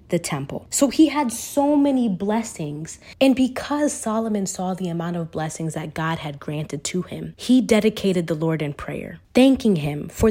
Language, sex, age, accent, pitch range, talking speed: English, female, 20-39, American, 165-225 Hz, 180 wpm